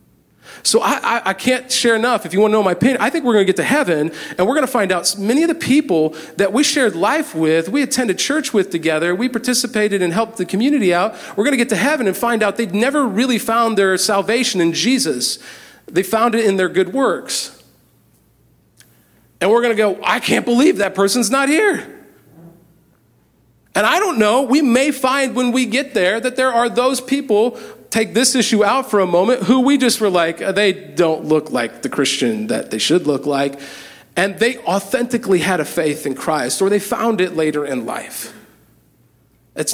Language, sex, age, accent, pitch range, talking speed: English, male, 40-59, American, 170-245 Hz, 215 wpm